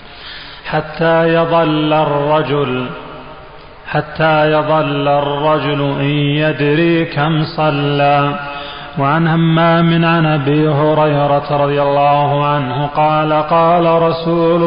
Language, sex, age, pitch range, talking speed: Arabic, male, 30-49, 145-155 Hz, 95 wpm